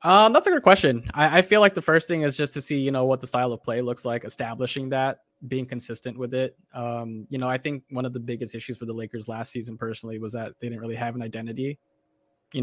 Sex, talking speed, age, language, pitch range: male, 265 wpm, 20-39, English, 120-145 Hz